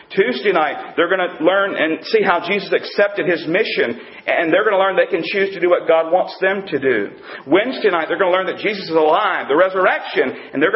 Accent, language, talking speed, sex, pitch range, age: American, English, 240 wpm, male, 175-275 Hz, 40-59